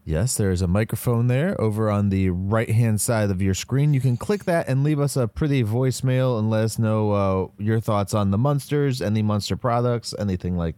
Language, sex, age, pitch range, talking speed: English, male, 20-39, 100-130 Hz, 230 wpm